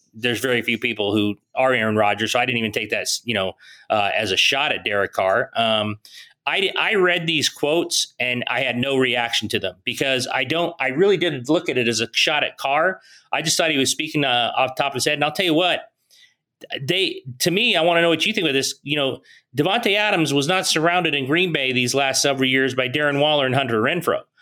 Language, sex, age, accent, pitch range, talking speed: English, male, 30-49, American, 130-165 Hz, 245 wpm